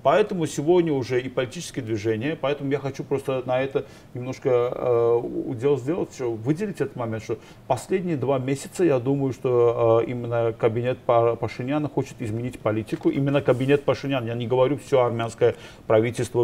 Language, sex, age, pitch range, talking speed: Russian, male, 50-69, 120-150 Hz, 155 wpm